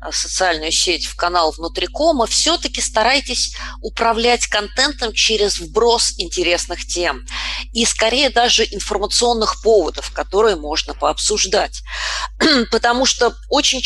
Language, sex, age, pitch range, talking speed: Russian, female, 20-39, 175-265 Hz, 110 wpm